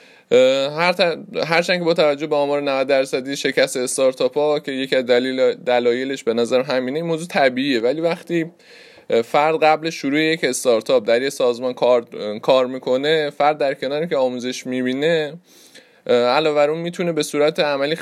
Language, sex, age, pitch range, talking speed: Persian, male, 20-39, 130-170 Hz, 155 wpm